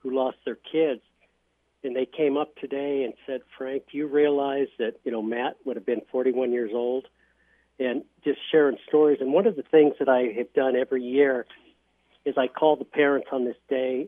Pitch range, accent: 130-155 Hz, American